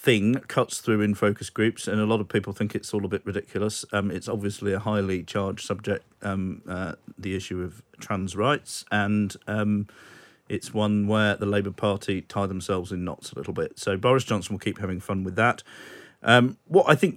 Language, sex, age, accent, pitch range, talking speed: English, male, 40-59, British, 95-105 Hz, 205 wpm